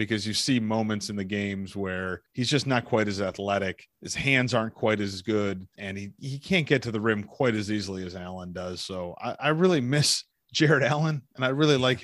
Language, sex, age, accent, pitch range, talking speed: English, male, 40-59, American, 100-135 Hz, 225 wpm